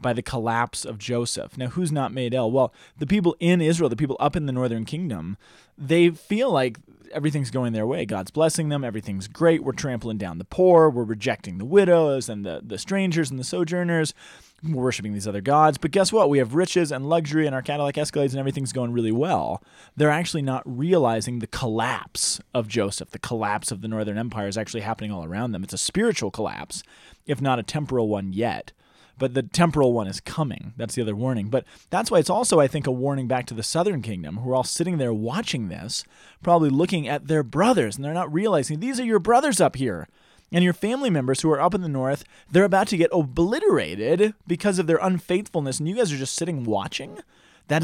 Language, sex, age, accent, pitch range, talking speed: English, male, 30-49, American, 115-165 Hz, 220 wpm